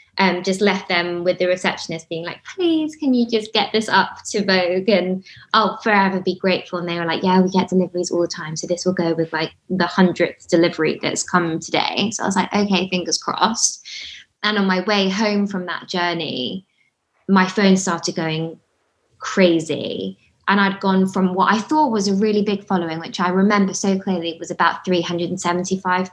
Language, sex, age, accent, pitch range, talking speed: English, female, 20-39, British, 170-195 Hz, 200 wpm